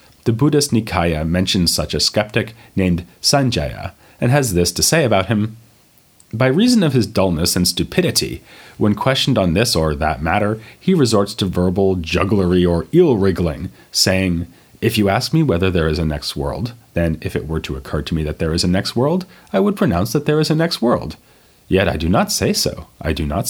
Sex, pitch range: male, 85-125 Hz